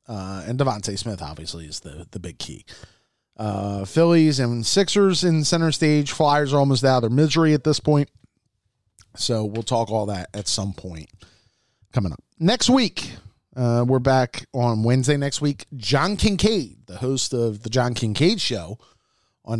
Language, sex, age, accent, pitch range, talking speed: English, male, 30-49, American, 110-155 Hz, 170 wpm